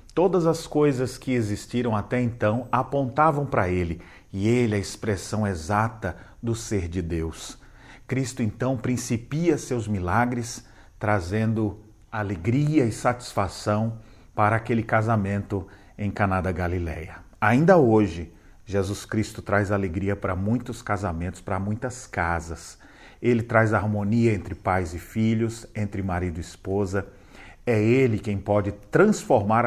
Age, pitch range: 40-59, 95-120 Hz